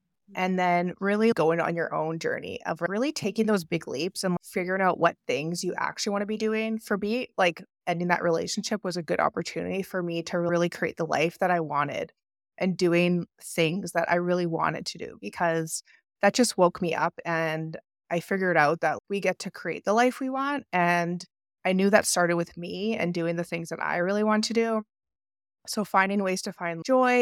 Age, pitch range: 20-39, 165-205 Hz